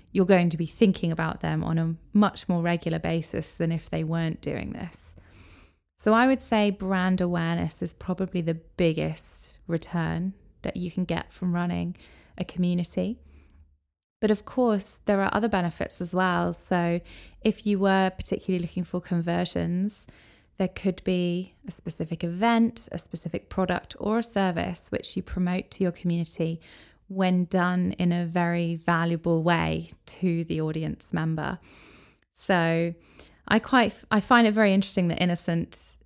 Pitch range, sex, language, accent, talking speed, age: 165-190 Hz, female, English, British, 155 wpm, 20-39